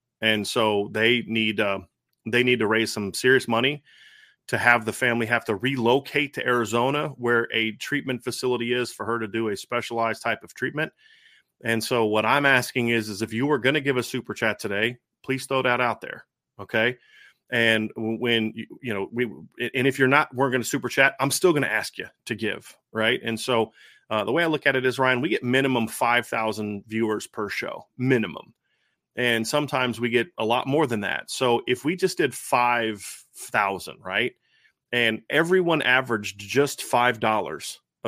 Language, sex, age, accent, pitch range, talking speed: English, male, 30-49, American, 115-135 Hz, 190 wpm